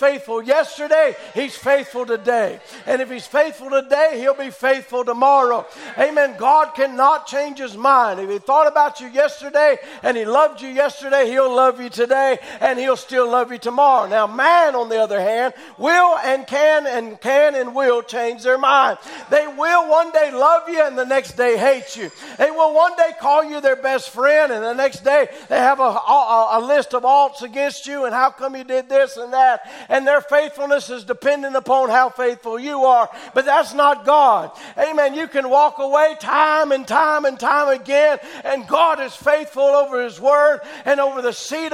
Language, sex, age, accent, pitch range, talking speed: English, male, 60-79, American, 255-295 Hz, 195 wpm